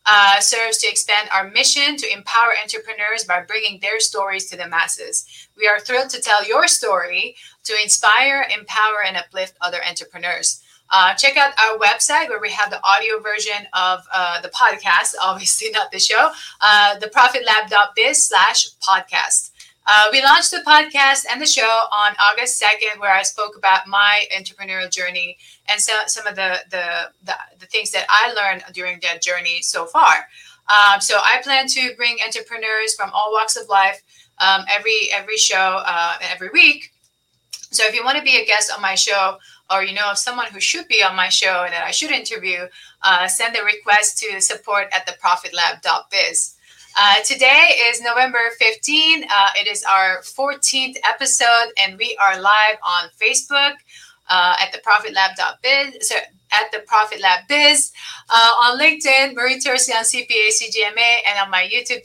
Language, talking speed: English, 180 wpm